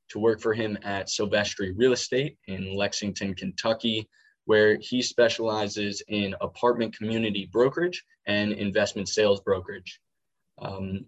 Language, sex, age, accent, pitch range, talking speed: English, male, 20-39, American, 100-120 Hz, 125 wpm